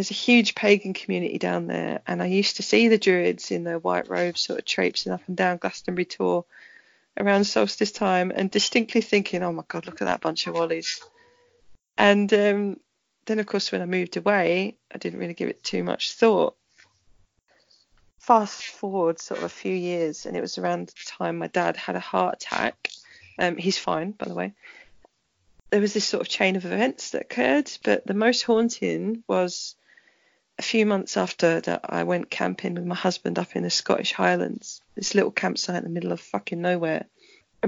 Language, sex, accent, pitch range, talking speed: English, female, British, 165-210 Hz, 195 wpm